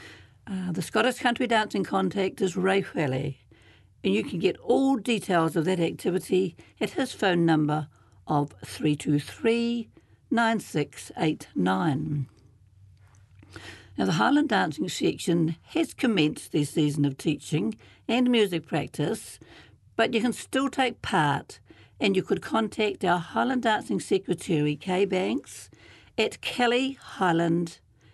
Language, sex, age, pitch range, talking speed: English, female, 60-79, 145-220 Hz, 120 wpm